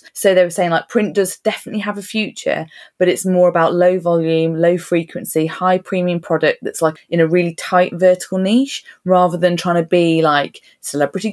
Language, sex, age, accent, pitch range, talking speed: English, female, 20-39, British, 160-185 Hz, 195 wpm